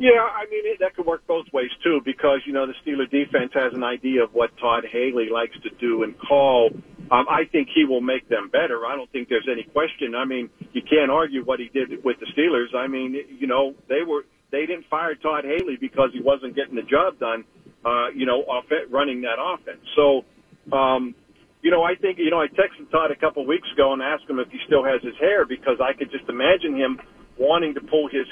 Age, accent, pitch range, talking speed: 50-69, American, 130-160 Hz, 235 wpm